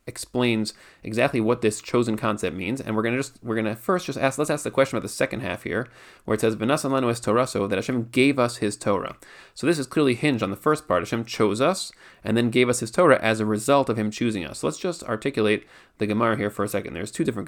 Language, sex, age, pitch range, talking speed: English, male, 30-49, 110-130 Hz, 265 wpm